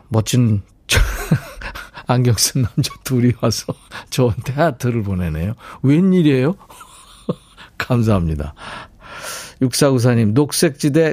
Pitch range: 110-150 Hz